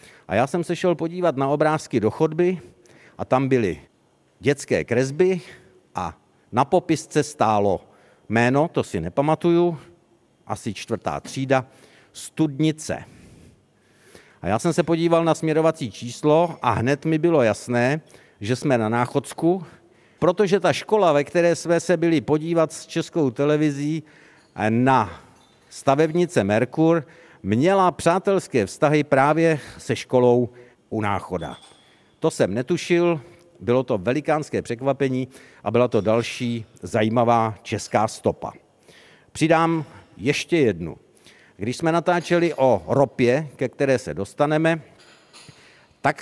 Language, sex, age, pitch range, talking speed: Czech, male, 50-69, 120-160 Hz, 120 wpm